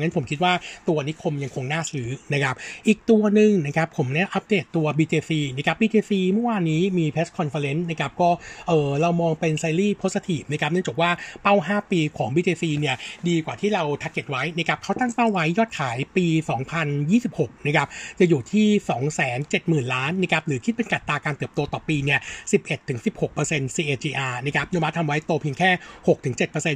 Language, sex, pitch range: Thai, male, 150-185 Hz